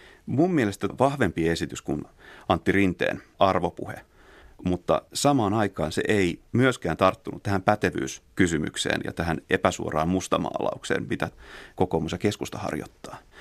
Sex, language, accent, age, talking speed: male, Finnish, native, 30-49, 115 wpm